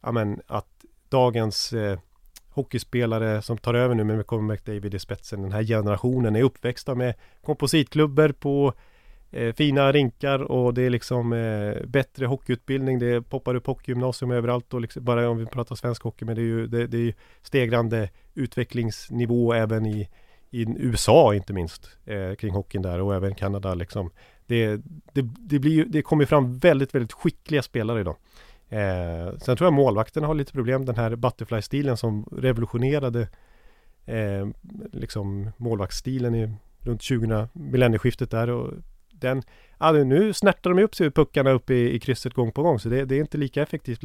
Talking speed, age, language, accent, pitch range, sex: 175 wpm, 30-49, Swedish, native, 105-135 Hz, male